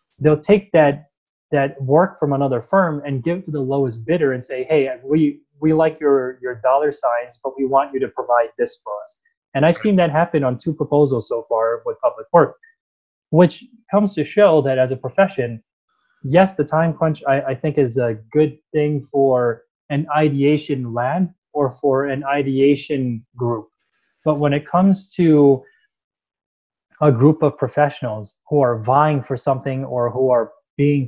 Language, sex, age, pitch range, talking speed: English, male, 20-39, 130-155 Hz, 180 wpm